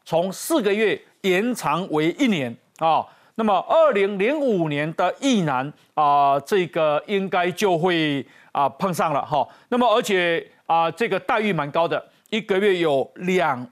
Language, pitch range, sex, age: Chinese, 160-220 Hz, male, 40-59